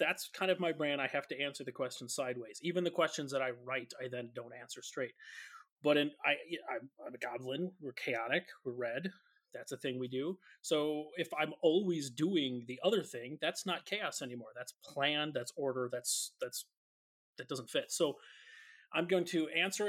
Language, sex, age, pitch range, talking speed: English, male, 30-49, 125-155 Hz, 195 wpm